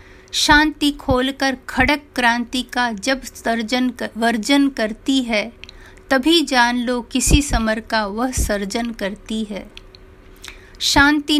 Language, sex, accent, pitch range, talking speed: Hindi, female, native, 220-265 Hz, 115 wpm